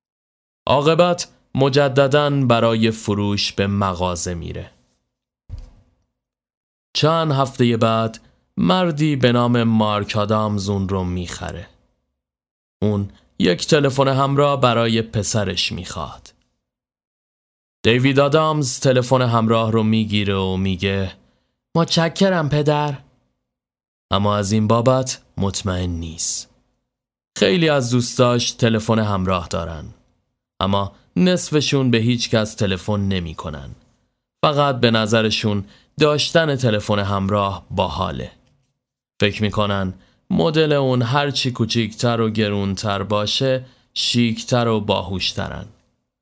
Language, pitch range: Persian, 100-130 Hz